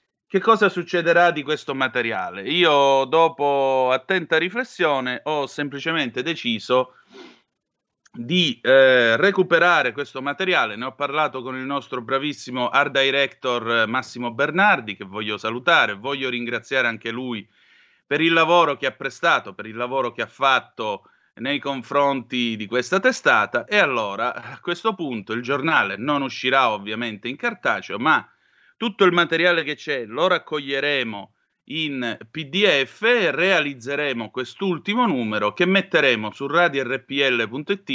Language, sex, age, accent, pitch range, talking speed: Italian, male, 30-49, native, 125-175 Hz, 130 wpm